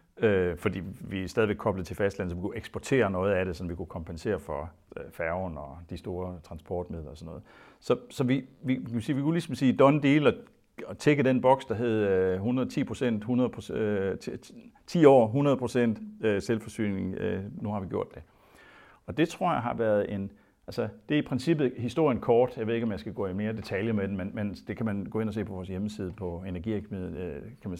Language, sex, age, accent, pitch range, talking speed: Danish, male, 60-79, native, 90-115 Hz, 210 wpm